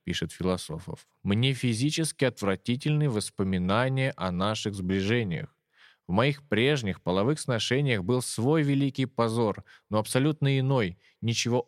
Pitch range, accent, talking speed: 100-135 Hz, native, 115 wpm